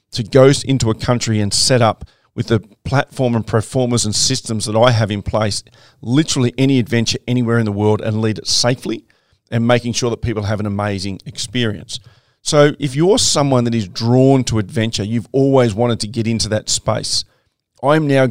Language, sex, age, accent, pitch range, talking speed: English, male, 40-59, Australian, 110-125 Hz, 195 wpm